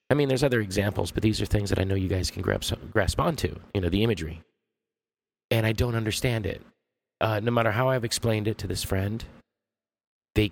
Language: English